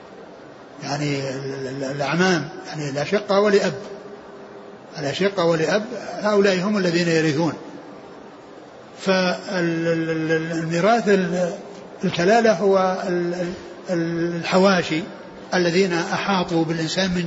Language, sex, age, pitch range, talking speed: Arabic, male, 60-79, 170-210 Hz, 65 wpm